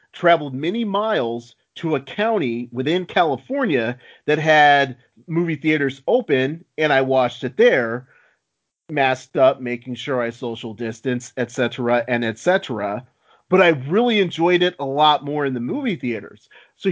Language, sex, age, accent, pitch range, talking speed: English, male, 40-59, American, 125-180 Hz, 145 wpm